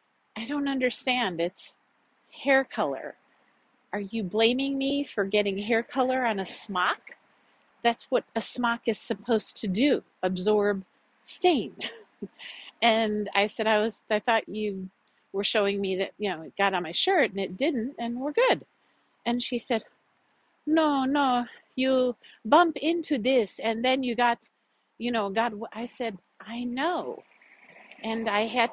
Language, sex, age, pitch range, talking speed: English, female, 50-69, 205-270 Hz, 160 wpm